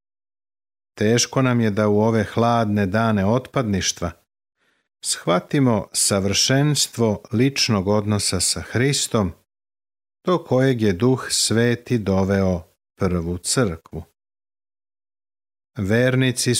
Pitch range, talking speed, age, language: 100-120 Hz, 85 wpm, 50-69, Croatian